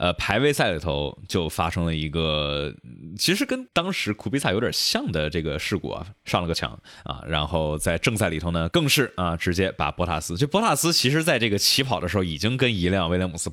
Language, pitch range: Chinese, 85-115 Hz